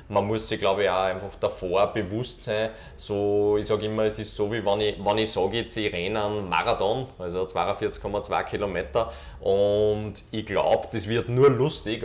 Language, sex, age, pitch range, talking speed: German, male, 20-39, 95-110 Hz, 190 wpm